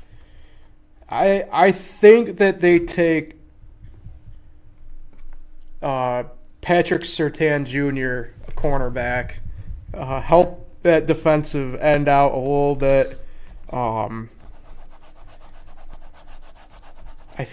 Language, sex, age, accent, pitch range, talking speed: English, male, 20-39, American, 125-160 Hz, 75 wpm